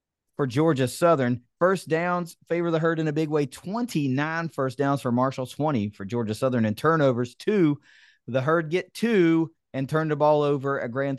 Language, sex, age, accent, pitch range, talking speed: English, male, 30-49, American, 120-155 Hz, 190 wpm